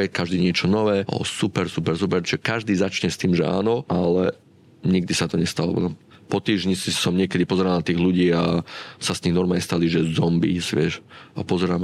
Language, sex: Slovak, male